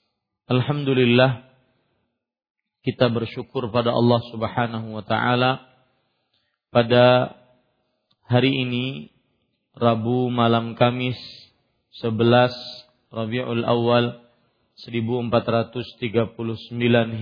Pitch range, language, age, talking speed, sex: 115-125 Hz, Malay, 40-59, 65 wpm, male